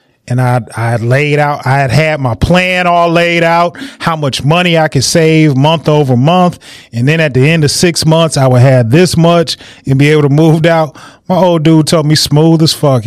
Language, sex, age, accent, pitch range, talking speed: English, male, 30-49, American, 130-160 Hz, 225 wpm